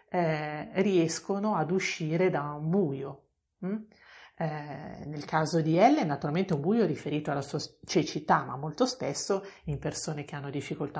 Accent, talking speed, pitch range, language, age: native, 155 wpm, 145-180 Hz, Italian, 40-59